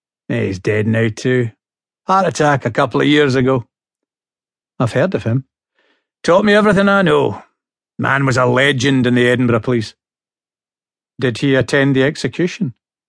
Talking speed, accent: 150 wpm, British